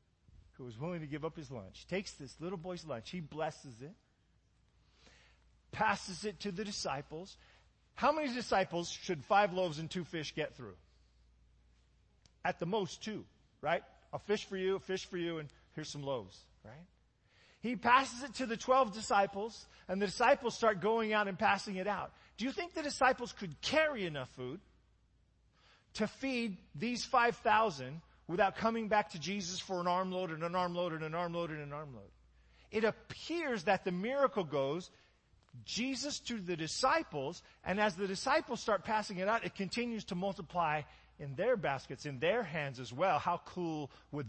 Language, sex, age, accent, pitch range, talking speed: English, male, 40-59, American, 145-220 Hz, 175 wpm